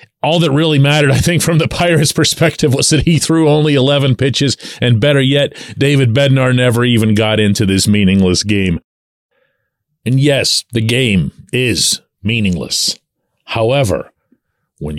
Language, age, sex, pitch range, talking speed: English, 40-59, male, 105-155 Hz, 150 wpm